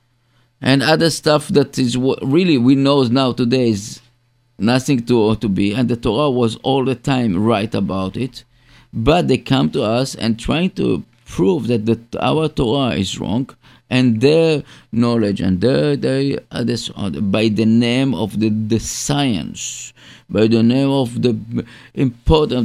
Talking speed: 155 wpm